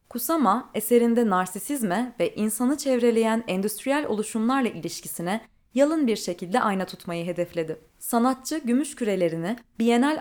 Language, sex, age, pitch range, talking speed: Turkish, female, 20-39, 180-245 Hz, 110 wpm